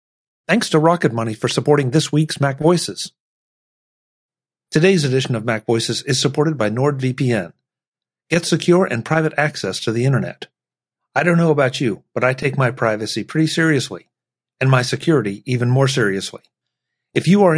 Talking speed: 165 wpm